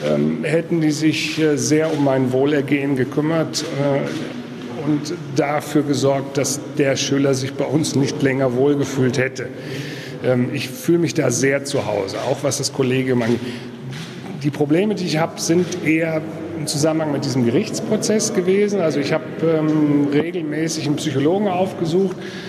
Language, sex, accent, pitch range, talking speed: German, male, German, 135-160 Hz, 155 wpm